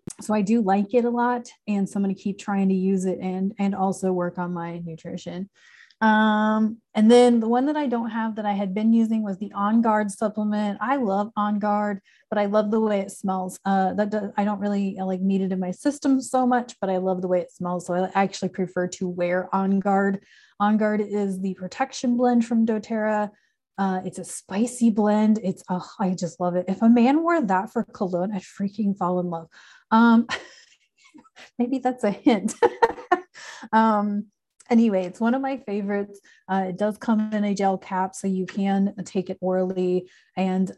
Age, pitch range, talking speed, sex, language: 30-49, 190-230 Hz, 205 wpm, female, English